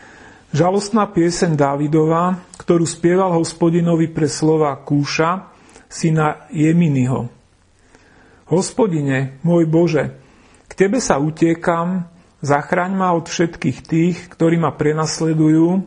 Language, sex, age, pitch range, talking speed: Slovak, male, 40-59, 140-170 Hz, 100 wpm